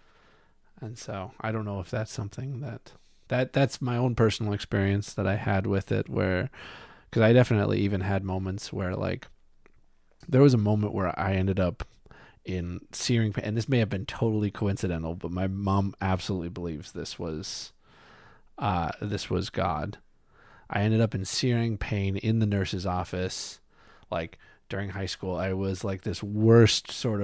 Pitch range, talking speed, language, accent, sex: 90-105 Hz, 170 wpm, English, American, male